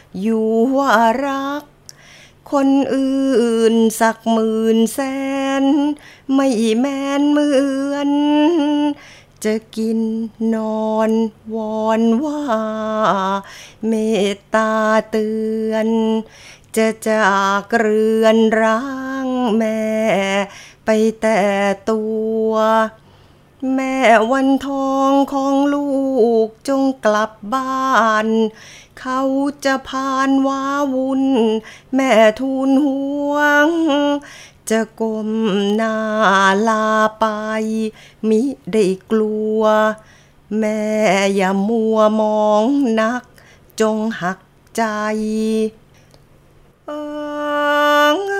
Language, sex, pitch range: Thai, female, 220-275 Hz